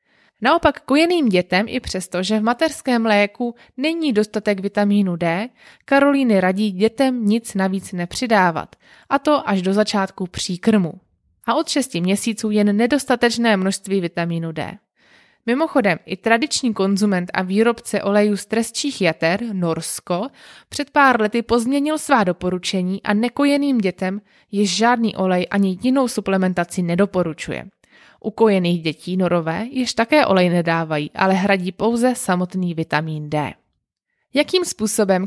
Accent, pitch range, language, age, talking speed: native, 185-235 Hz, Czech, 20-39, 130 wpm